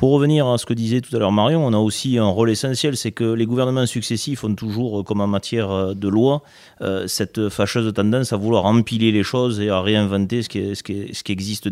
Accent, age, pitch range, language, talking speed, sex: French, 30-49, 100-120 Hz, French, 220 wpm, male